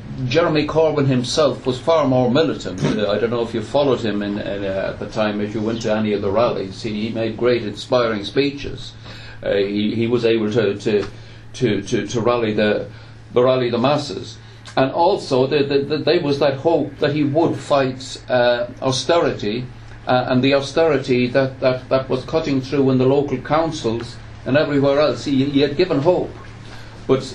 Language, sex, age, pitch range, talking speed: English, male, 60-79, 115-145 Hz, 170 wpm